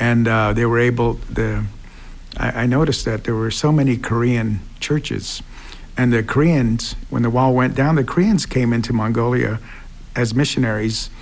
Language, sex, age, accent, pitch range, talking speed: English, male, 50-69, American, 110-130 Hz, 165 wpm